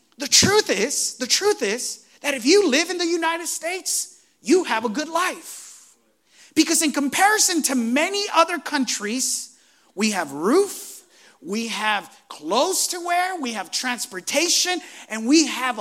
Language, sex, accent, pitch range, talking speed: English, male, American, 190-265 Hz, 150 wpm